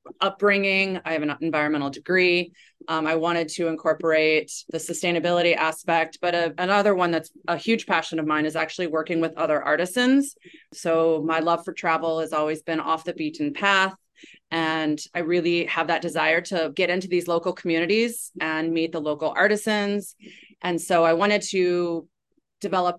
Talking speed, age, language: 165 wpm, 30-49, English